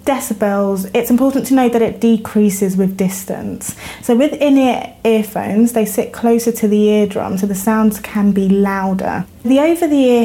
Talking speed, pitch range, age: 170 wpm, 195-225 Hz, 20-39